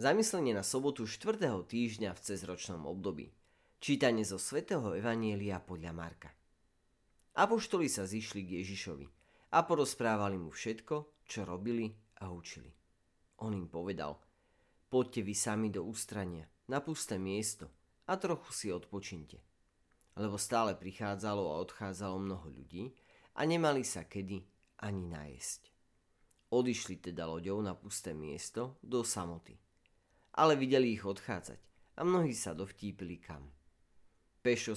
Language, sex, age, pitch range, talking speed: Slovak, male, 30-49, 85-115 Hz, 125 wpm